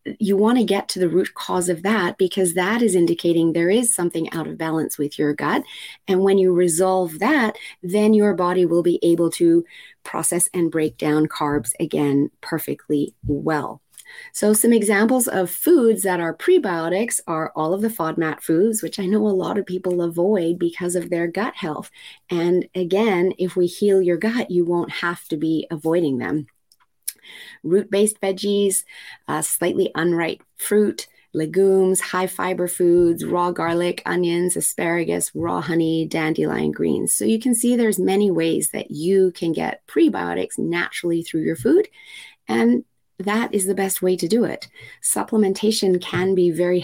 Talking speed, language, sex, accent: 165 wpm, English, female, American